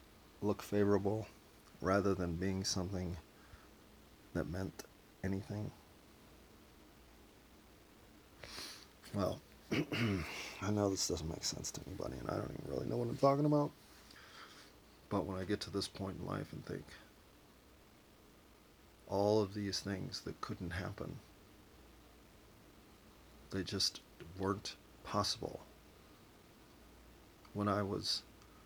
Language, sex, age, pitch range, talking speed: English, male, 40-59, 95-110 Hz, 110 wpm